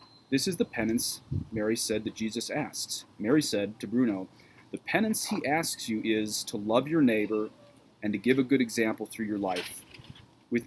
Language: English